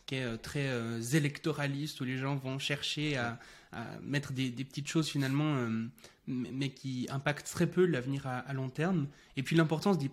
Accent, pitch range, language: French, 130-170 Hz, French